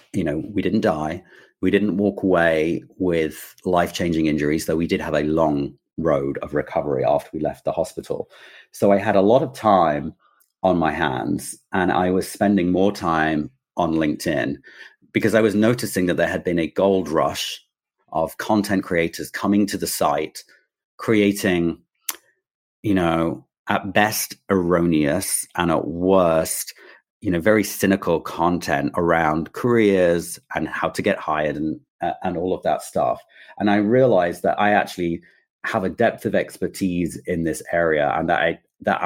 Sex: male